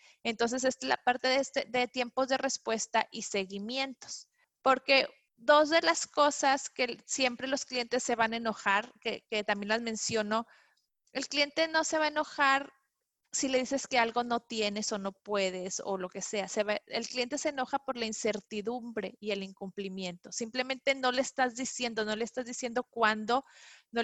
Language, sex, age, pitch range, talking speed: Spanish, female, 30-49, 215-260 Hz, 185 wpm